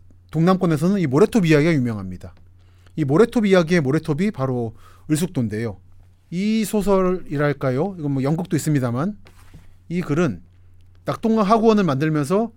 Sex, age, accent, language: male, 30-49, native, Korean